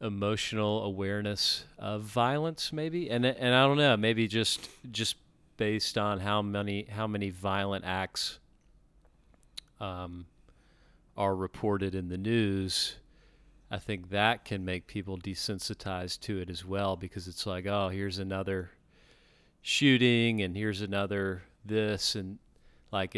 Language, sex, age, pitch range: English, male, 40-59, 95-105 Hz